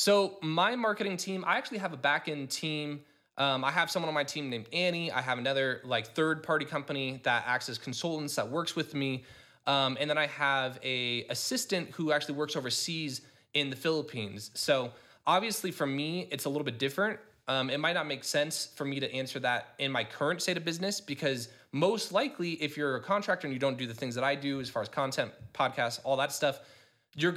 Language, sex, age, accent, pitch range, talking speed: English, male, 20-39, American, 135-175 Hz, 220 wpm